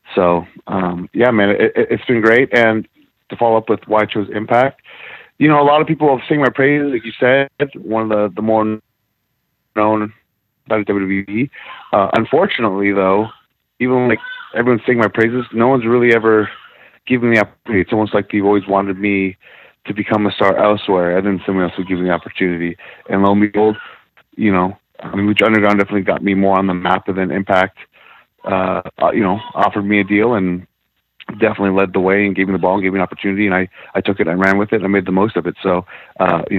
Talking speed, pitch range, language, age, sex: 225 wpm, 95-110 Hz, English, 30-49, male